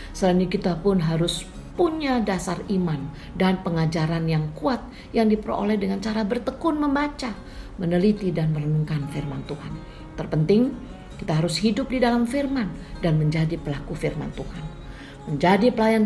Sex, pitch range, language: female, 160-210 Hz, Indonesian